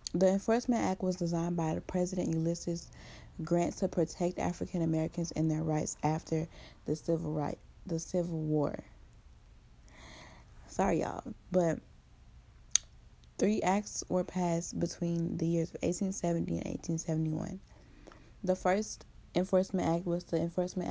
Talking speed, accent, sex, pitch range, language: 125 wpm, American, female, 160-180 Hz, English